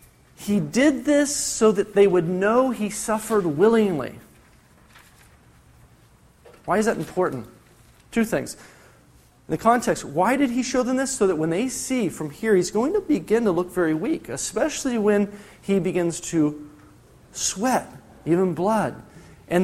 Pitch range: 175-260 Hz